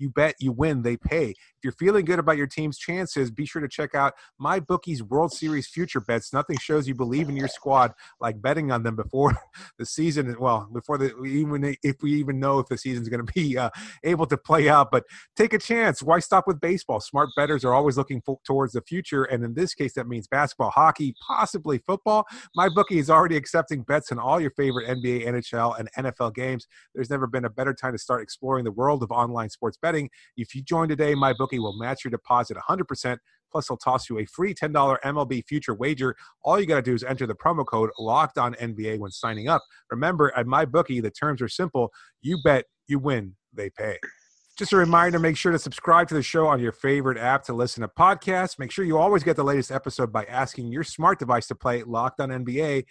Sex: male